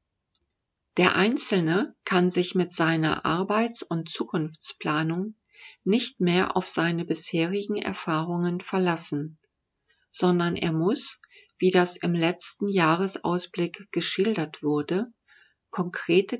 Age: 40-59